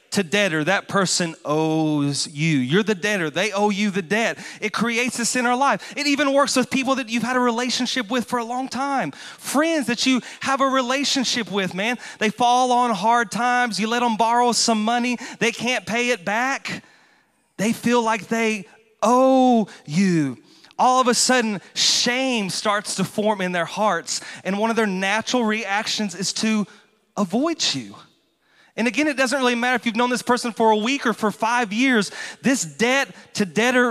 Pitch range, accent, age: 195-250 Hz, American, 30-49